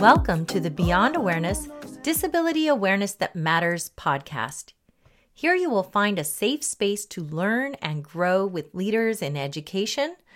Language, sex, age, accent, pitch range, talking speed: English, female, 30-49, American, 170-240 Hz, 145 wpm